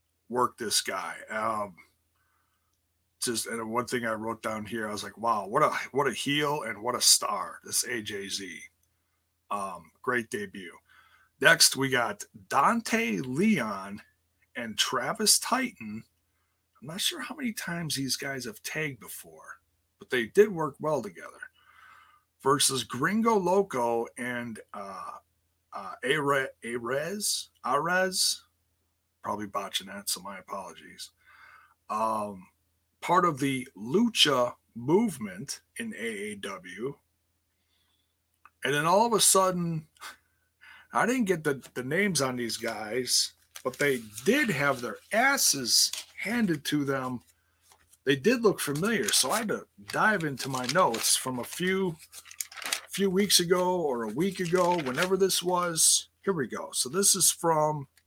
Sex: male